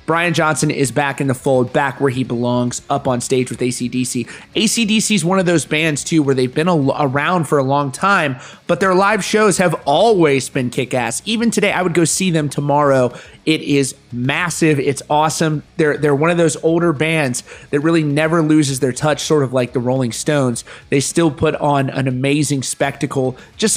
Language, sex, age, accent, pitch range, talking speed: English, male, 30-49, American, 135-160 Hz, 200 wpm